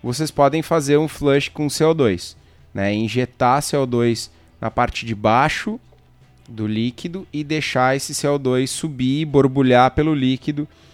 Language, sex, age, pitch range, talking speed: Portuguese, male, 20-39, 125-150 Hz, 135 wpm